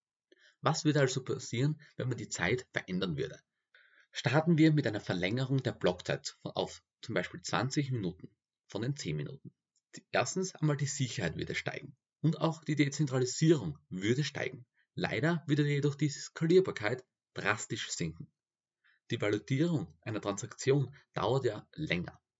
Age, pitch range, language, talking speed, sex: 30-49, 125-155 Hz, German, 140 wpm, male